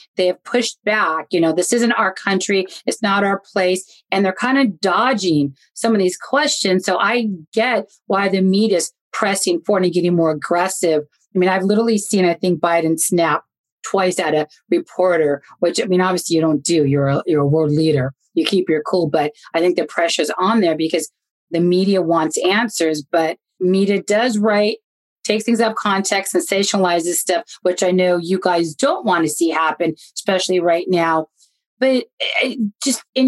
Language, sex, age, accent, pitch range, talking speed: English, female, 30-49, American, 170-215 Hz, 190 wpm